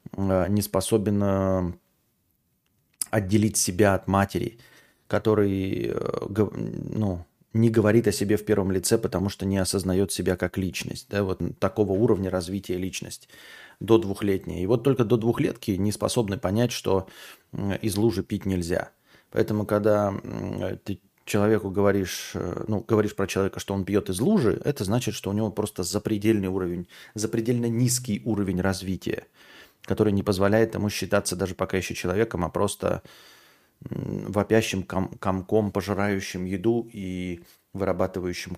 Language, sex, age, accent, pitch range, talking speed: Russian, male, 30-49, native, 95-105 Hz, 130 wpm